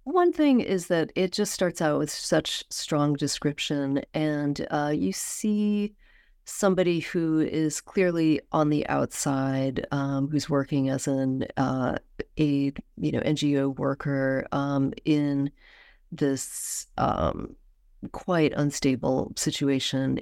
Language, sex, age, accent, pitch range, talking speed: English, female, 40-59, American, 140-160 Hz, 120 wpm